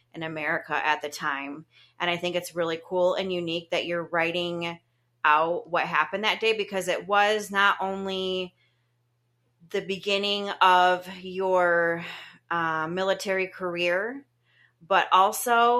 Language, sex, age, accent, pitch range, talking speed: English, female, 30-49, American, 155-180 Hz, 135 wpm